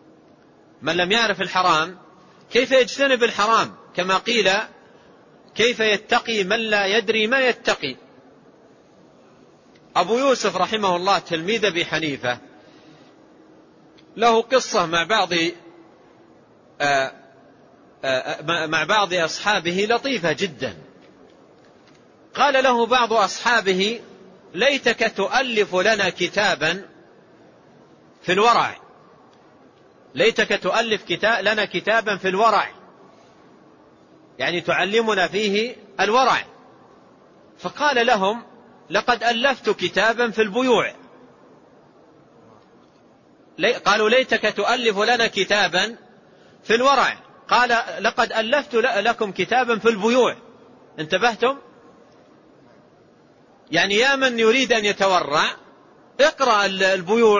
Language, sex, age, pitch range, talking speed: Arabic, male, 40-59, 190-235 Hz, 85 wpm